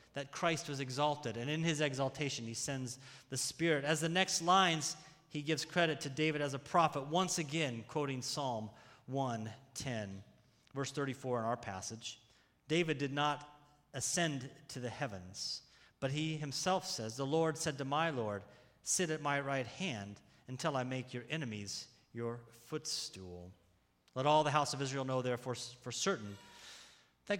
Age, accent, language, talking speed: 30-49, American, English, 160 wpm